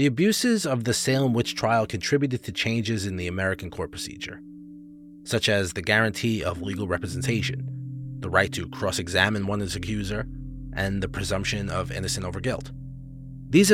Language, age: English, 30-49